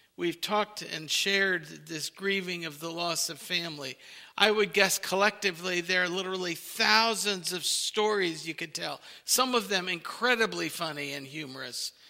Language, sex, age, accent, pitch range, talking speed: English, male, 50-69, American, 180-230 Hz, 155 wpm